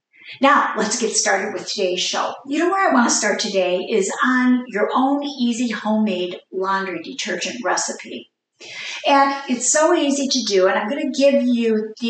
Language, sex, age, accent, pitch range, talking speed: English, female, 50-69, American, 200-275 Hz, 185 wpm